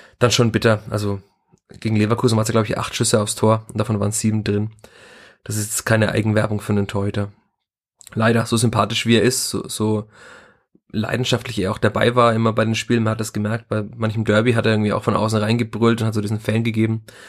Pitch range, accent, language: 105-115 Hz, German, German